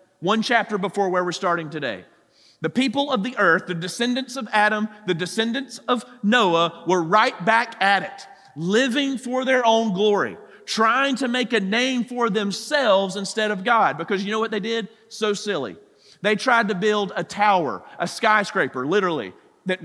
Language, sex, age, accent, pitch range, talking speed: English, male, 40-59, American, 185-240 Hz, 175 wpm